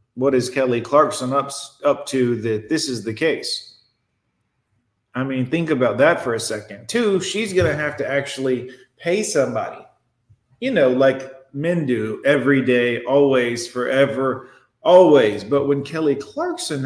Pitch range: 125-195 Hz